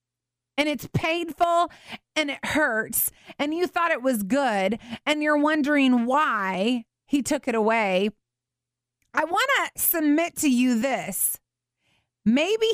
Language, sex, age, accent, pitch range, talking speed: English, female, 30-49, American, 175-275 Hz, 130 wpm